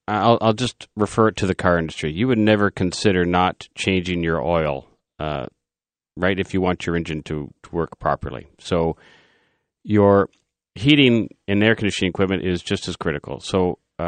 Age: 40-59